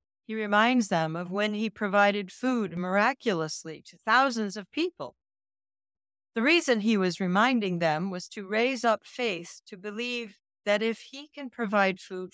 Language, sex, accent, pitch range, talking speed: English, female, American, 175-235 Hz, 155 wpm